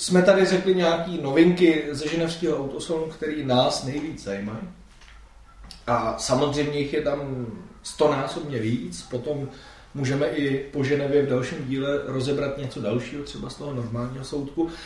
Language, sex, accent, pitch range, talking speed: Czech, male, native, 130-170 Hz, 140 wpm